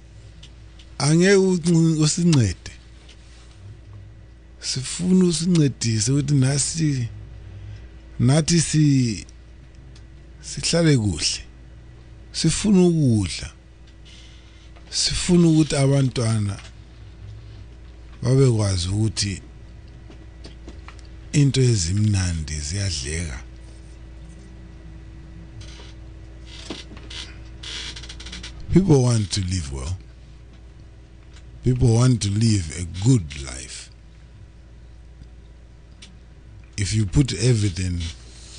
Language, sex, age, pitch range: English, male, 50-69, 80-115 Hz